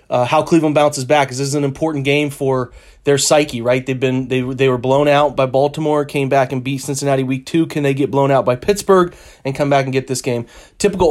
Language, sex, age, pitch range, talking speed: English, male, 30-49, 125-145 Hz, 260 wpm